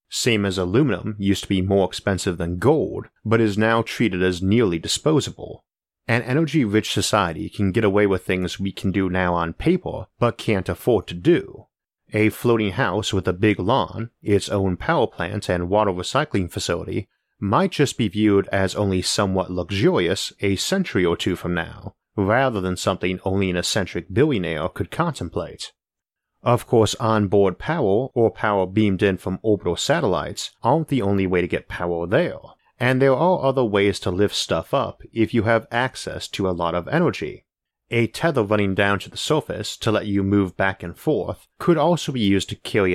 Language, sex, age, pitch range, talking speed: English, male, 30-49, 95-115 Hz, 185 wpm